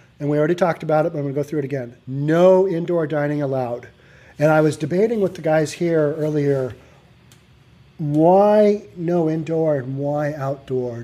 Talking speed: 180 wpm